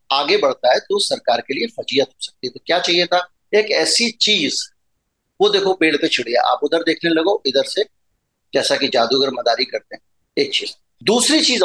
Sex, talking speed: male, 180 wpm